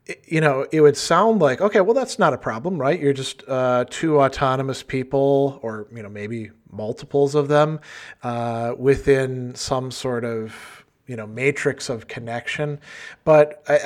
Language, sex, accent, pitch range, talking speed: English, male, American, 115-145 Hz, 165 wpm